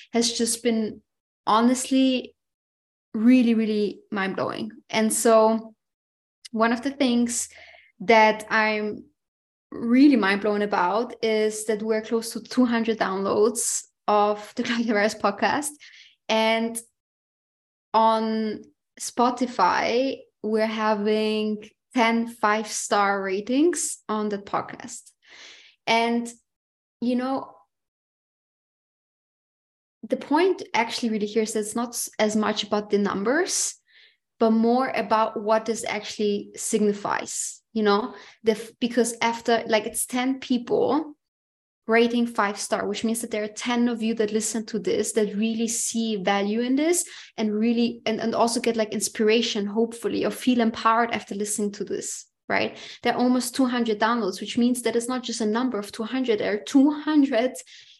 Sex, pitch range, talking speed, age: female, 215-240 Hz, 140 wpm, 20-39